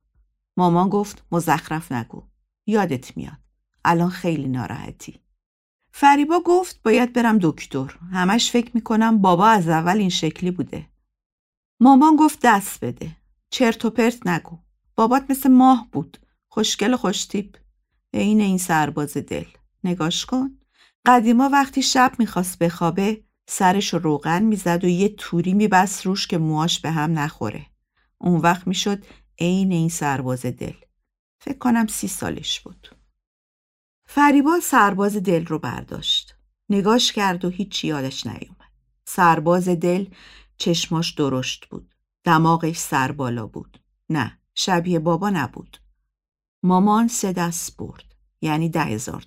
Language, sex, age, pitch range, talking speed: Persian, female, 50-69, 160-230 Hz, 125 wpm